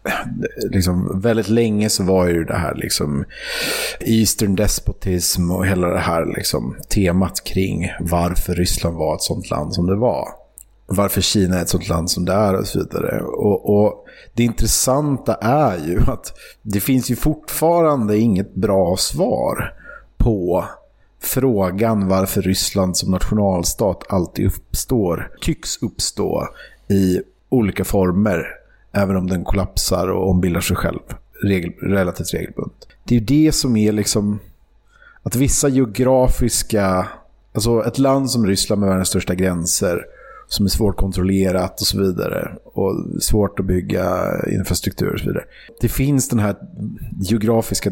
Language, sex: English, male